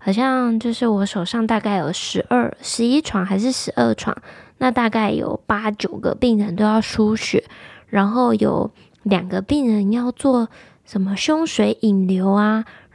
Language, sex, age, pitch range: Chinese, female, 20-39, 210-245 Hz